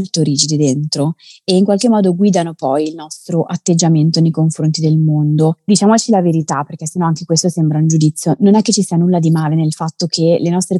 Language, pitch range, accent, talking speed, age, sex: Italian, 160-190 Hz, native, 215 wpm, 20-39, female